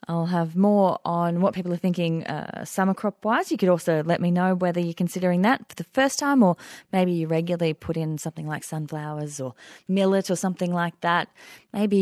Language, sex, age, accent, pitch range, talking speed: English, female, 30-49, Australian, 160-190 Hz, 205 wpm